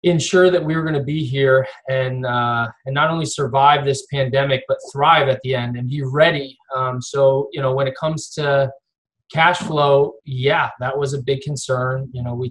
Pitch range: 130-155 Hz